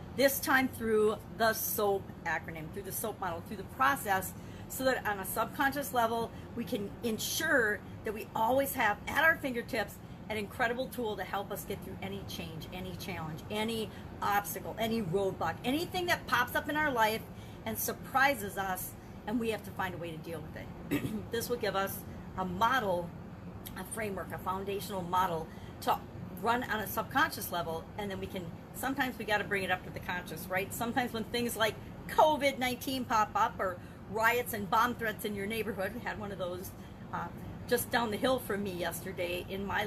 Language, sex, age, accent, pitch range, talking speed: English, female, 40-59, American, 185-245 Hz, 195 wpm